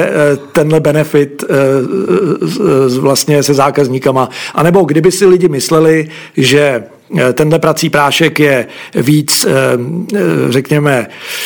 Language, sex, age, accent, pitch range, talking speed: Czech, male, 50-69, native, 140-165 Hz, 95 wpm